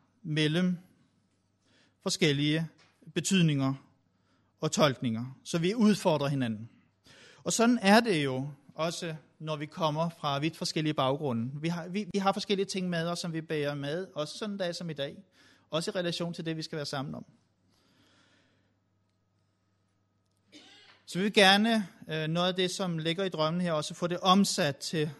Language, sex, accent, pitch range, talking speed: Danish, male, native, 120-185 Hz, 160 wpm